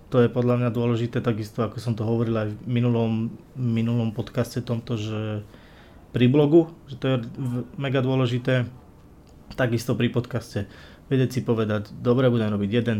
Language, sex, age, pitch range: Slovak, male, 20-39, 110-125 Hz